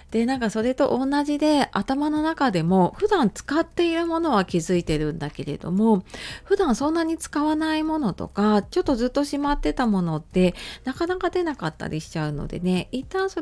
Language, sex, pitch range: Japanese, female, 165-250 Hz